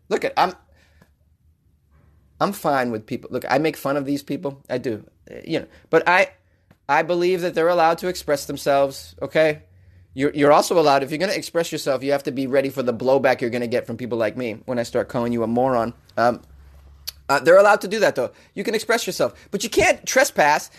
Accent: American